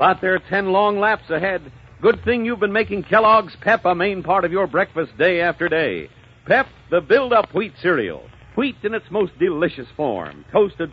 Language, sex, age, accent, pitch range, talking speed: English, male, 60-79, American, 160-220 Hz, 190 wpm